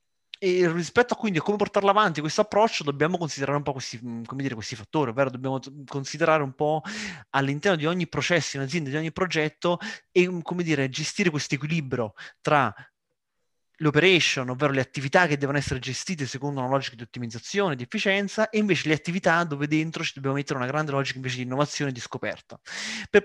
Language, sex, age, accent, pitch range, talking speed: Italian, male, 20-39, native, 130-175 Hz, 190 wpm